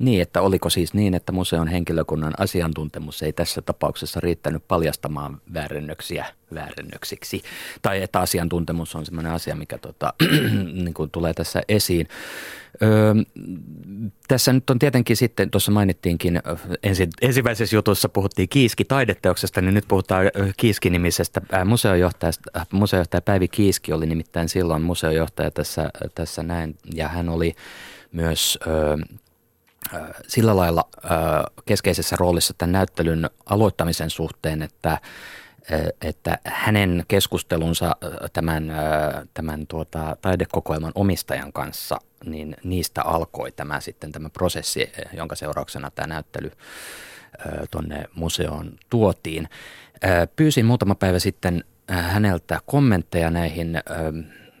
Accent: native